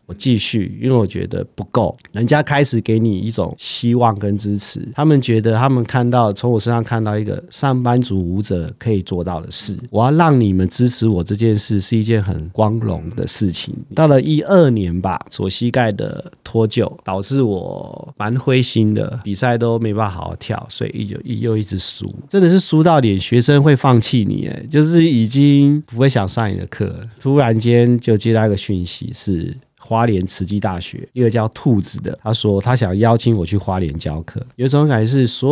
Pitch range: 100-130 Hz